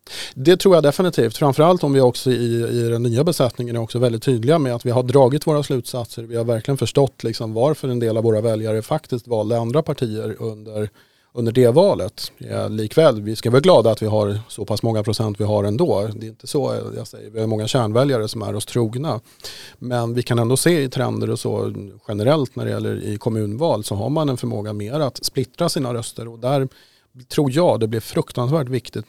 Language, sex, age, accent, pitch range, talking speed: Swedish, male, 30-49, Norwegian, 110-130 Hz, 215 wpm